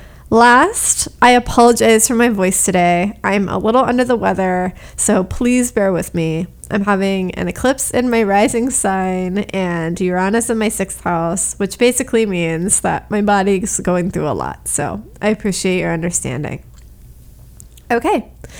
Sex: female